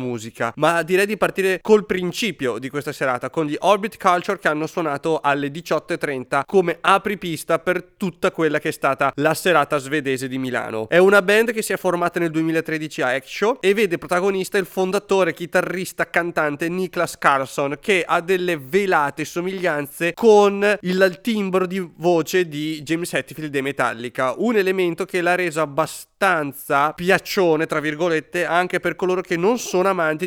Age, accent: 30-49, Italian